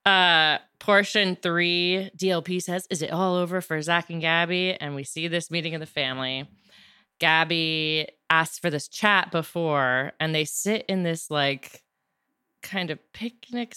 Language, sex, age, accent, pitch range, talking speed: English, female, 20-39, American, 150-185 Hz, 155 wpm